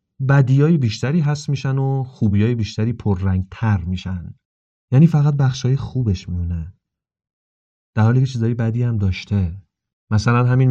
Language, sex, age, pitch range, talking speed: Persian, male, 30-49, 100-145 Hz, 130 wpm